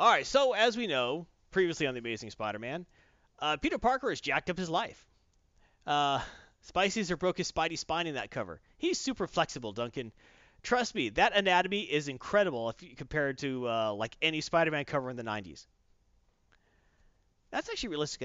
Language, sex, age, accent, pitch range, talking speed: English, male, 30-49, American, 105-175 Hz, 170 wpm